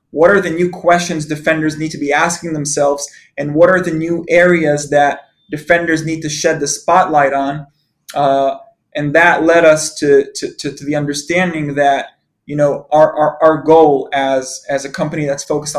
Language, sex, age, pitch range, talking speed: English, male, 20-39, 145-165 Hz, 185 wpm